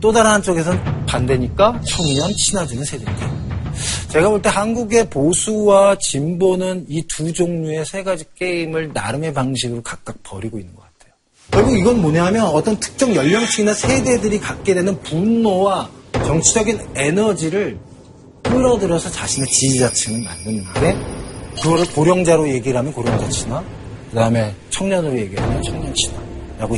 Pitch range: 120-190 Hz